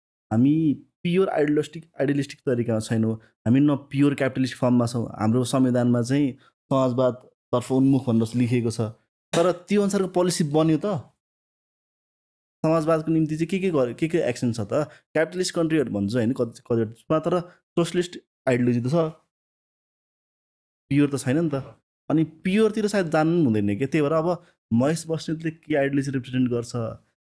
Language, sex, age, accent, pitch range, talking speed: English, male, 20-39, Indian, 120-155 Hz, 85 wpm